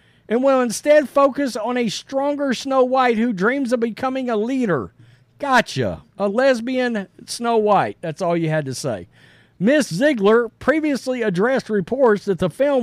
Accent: American